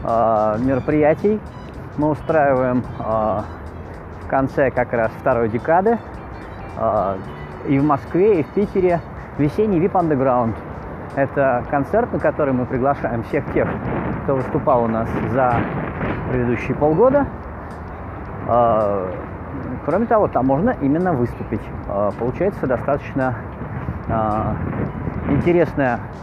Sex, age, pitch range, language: male, 30-49, 110-155 Hz, Russian